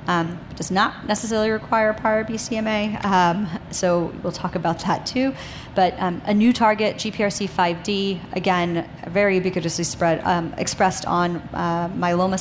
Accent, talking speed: American, 130 wpm